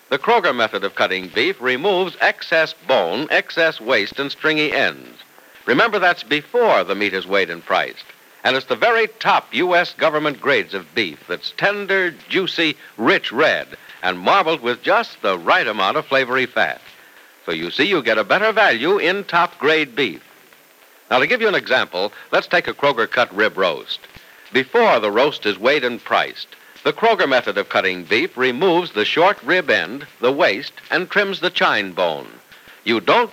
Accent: American